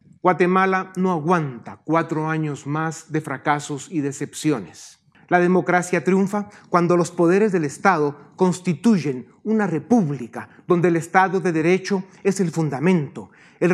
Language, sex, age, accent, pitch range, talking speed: Spanish, male, 40-59, Mexican, 155-190 Hz, 130 wpm